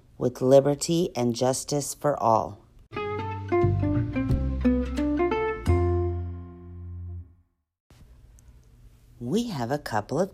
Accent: American